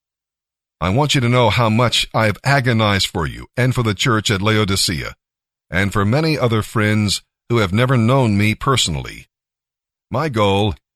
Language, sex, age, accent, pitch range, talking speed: English, male, 50-69, American, 100-125 Hz, 170 wpm